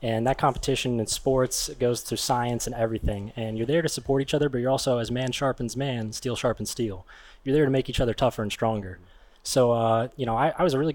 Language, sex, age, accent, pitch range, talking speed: English, male, 20-39, American, 110-135 Hz, 245 wpm